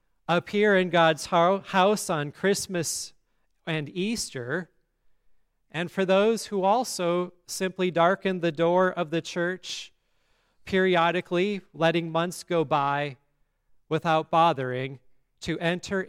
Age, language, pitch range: 40-59, English, 145-185 Hz